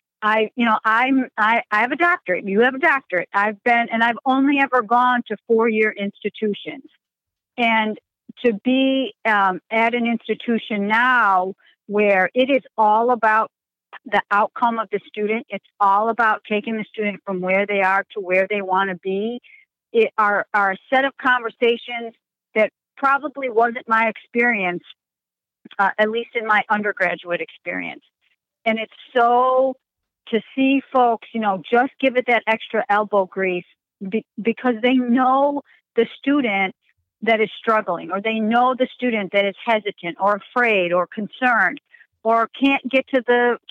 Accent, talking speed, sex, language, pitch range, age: American, 160 wpm, female, English, 200-245 Hz, 50-69